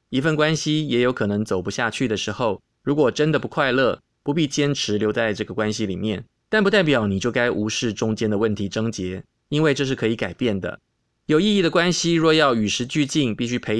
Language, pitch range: Chinese, 105-135 Hz